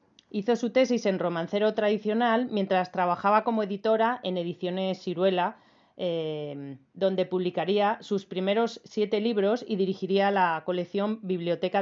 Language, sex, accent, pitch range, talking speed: Spanish, female, Spanish, 180-215 Hz, 125 wpm